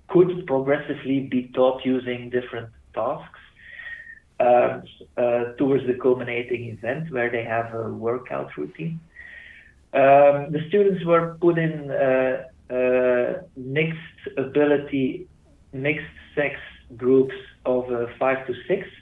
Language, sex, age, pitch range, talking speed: English, male, 50-69, 125-165 Hz, 115 wpm